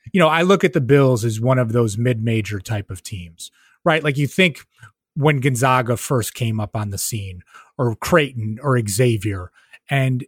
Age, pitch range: 30-49, 115-145 Hz